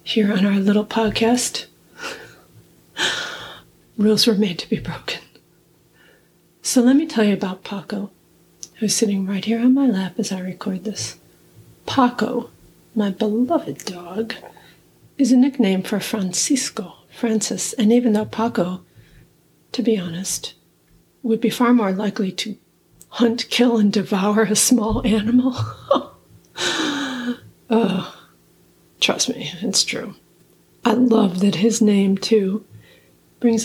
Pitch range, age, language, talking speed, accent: 195-235 Hz, 40-59, English, 125 wpm, American